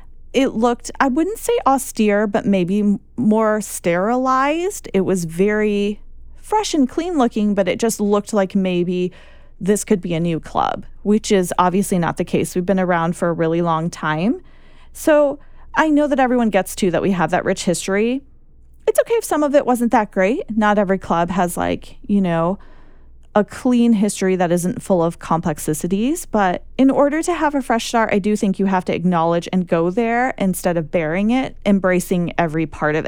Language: English